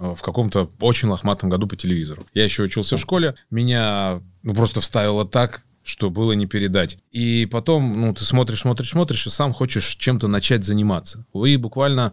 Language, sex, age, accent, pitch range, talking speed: Russian, male, 20-39, native, 95-120 Hz, 180 wpm